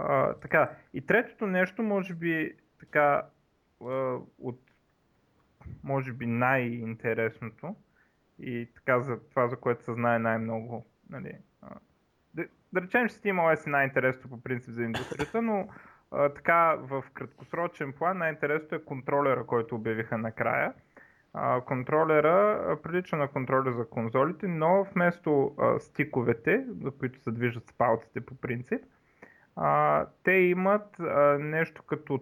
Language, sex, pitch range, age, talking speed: Bulgarian, male, 120-160 Hz, 20-39, 130 wpm